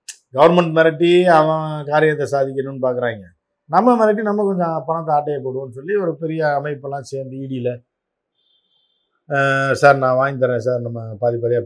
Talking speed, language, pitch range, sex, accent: 135 wpm, Tamil, 120-155 Hz, male, native